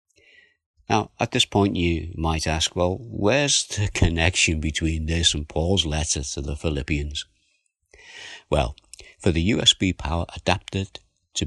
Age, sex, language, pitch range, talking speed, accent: 60-79, male, English, 75-100 Hz, 135 wpm, British